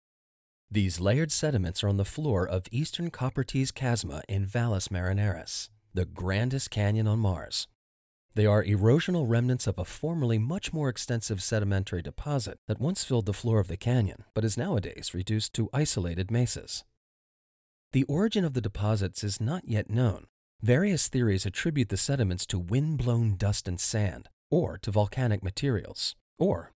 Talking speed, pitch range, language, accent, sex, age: 155 wpm, 95-125 Hz, English, American, male, 40-59